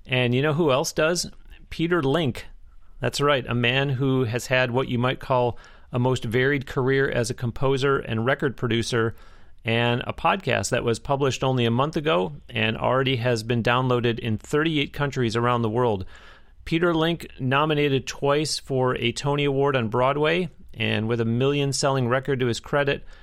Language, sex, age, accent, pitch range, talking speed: English, male, 40-59, American, 120-145 Hz, 175 wpm